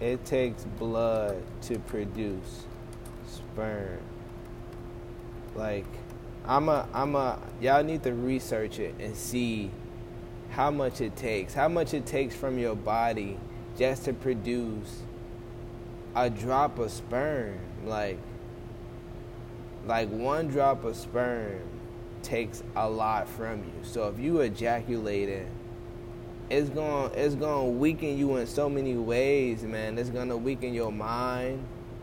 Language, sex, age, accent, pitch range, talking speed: English, male, 20-39, American, 115-125 Hz, 125 wpm